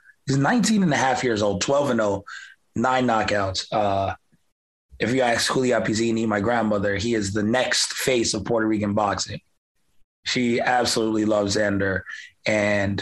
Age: 20-39